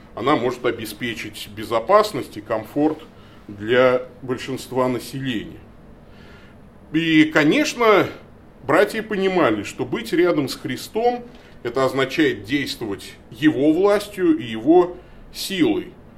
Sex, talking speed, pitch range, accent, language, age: male, 95 wpm, 125-190 Hz, native, Russian, 30-49